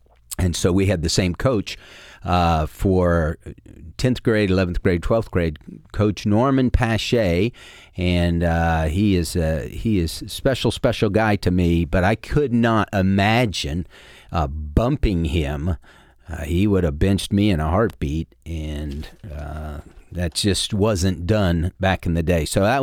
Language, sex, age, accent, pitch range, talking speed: English, male, 40-59, American, 85-105 Hz, 150 wpm